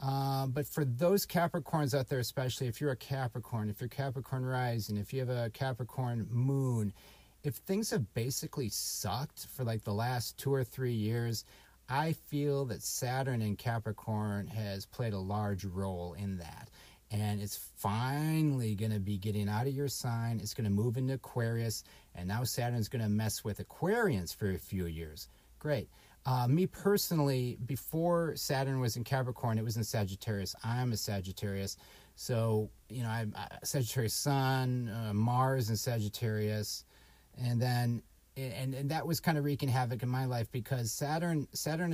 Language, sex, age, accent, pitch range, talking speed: English, male, 40-59, American, 110-140 Hz, 170 wpm